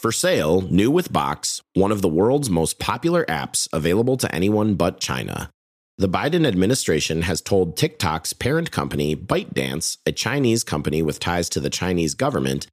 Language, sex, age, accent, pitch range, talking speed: English, male, 30-49, American, 75-105 Hz, 165 wpm